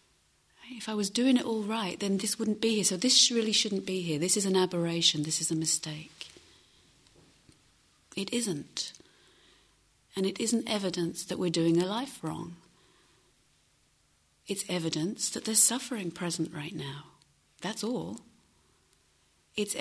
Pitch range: 165-200 Hz